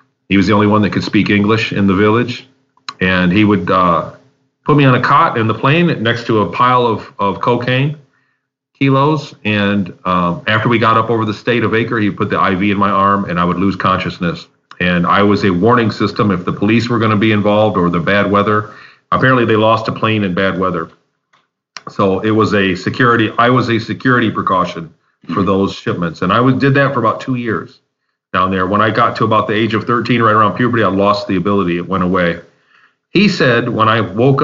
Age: 40-59